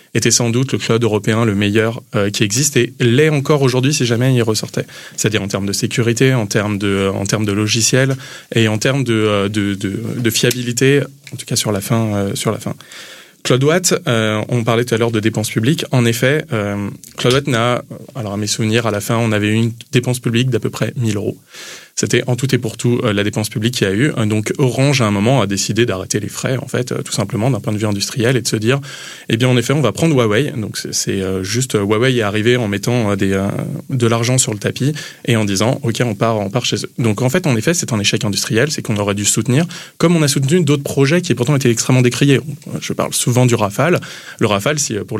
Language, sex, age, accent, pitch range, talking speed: French, male, 20-39, French, 110-130 Hz, 250 wpm